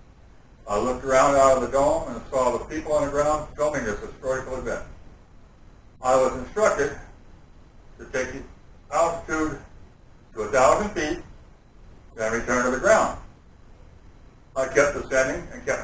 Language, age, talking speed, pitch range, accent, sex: English, 60-79, 145 wpm, 110-145 Hz, American, male